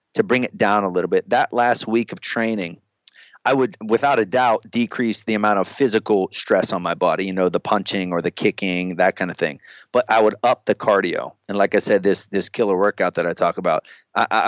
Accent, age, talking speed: American, 30-49, 230 wpm